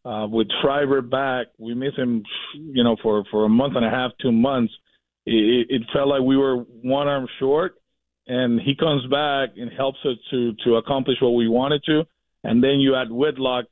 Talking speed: 200 wpm